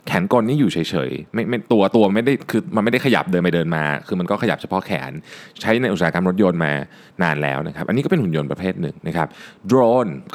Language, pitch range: Thai, 85-130 Hz